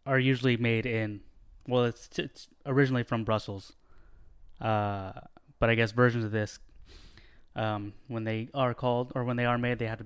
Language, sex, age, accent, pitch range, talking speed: English, male, 20-39, American, 105-120 Hz, 180 wpm